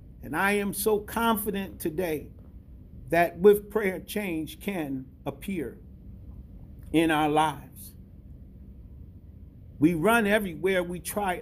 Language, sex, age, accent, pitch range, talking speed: English, male, 50-69, American, 145-205 Hz, 105 wpm